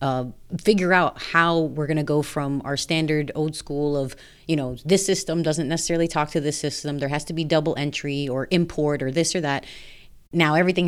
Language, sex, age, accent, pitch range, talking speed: English, female, 30-49, American, 140-175 Hz, 210 wpm